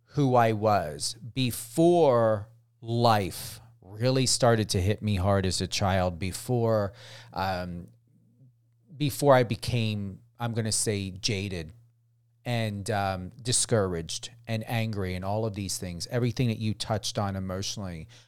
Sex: male